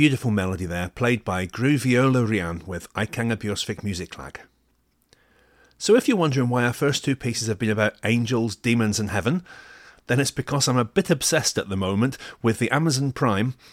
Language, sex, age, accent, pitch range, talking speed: English, male, 40-59, British, 100-135 Hz, 190 wpm